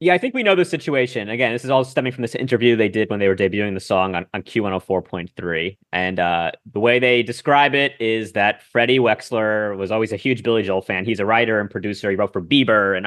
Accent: American